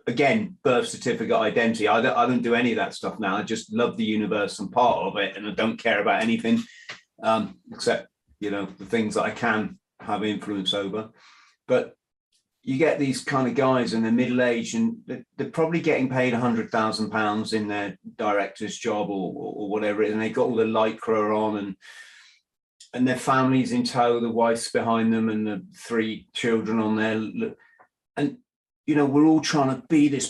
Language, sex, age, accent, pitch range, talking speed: English, male, 30-49, British, 110-150 Hz, 200 wpm